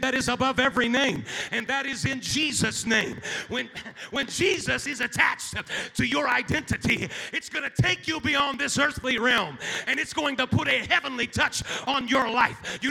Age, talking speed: 40-59, 185 wpm